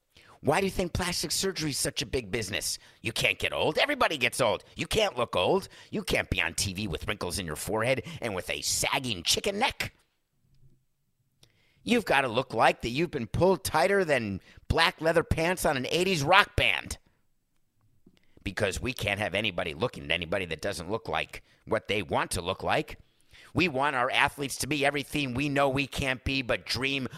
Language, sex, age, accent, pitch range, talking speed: English, male, 50-69, American, 105-140 Hz, 195 wpm